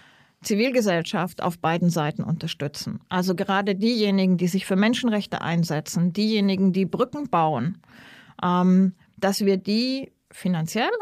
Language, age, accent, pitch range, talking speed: German, 40-59, German, 175-220 Hz, 115 wpm